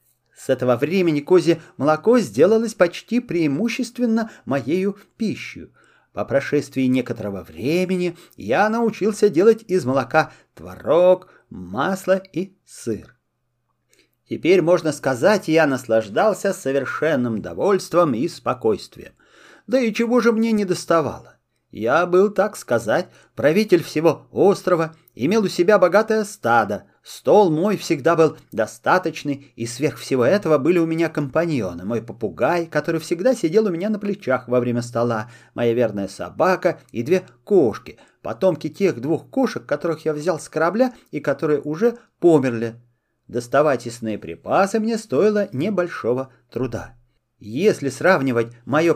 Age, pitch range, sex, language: 30-49, 130-195 Hz, male, Russian